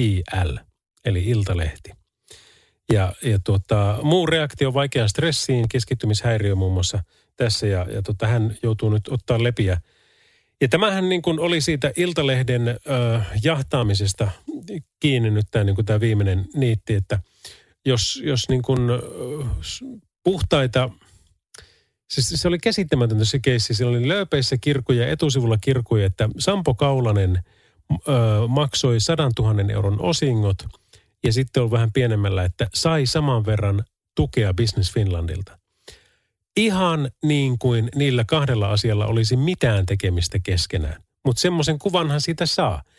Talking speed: 125 wpm